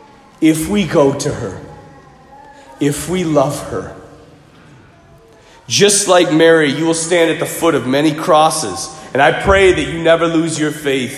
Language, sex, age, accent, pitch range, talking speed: English, male, 40-59, American, 140-195 Hz, 160 wpm